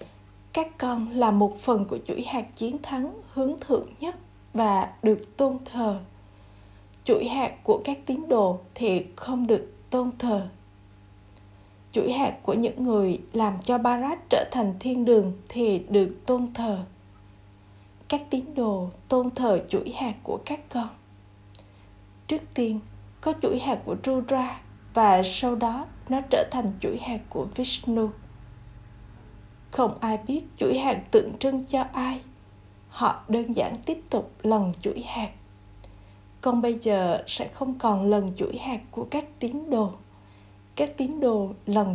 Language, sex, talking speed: Vietnamese, female, 150 wpm